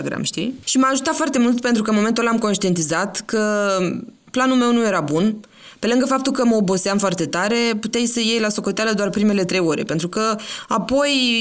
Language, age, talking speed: Romanian, 20-39, 205 wpm